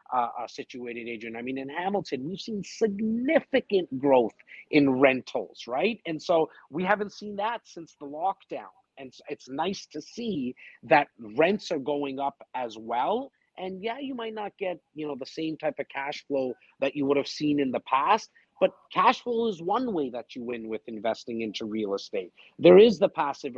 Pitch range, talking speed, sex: 130-190 Hz, 200 wpm, male